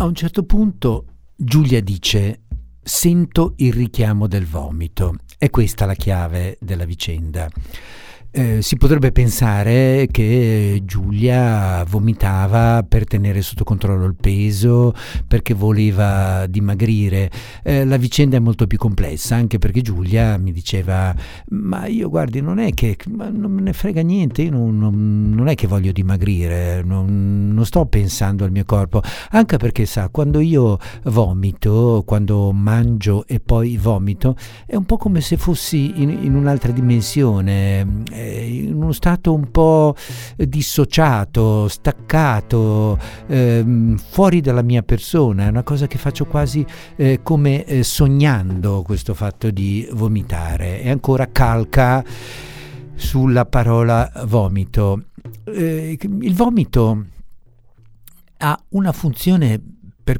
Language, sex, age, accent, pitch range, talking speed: Italian, male, 60-79, native, 100-140 Hz, 130 wpm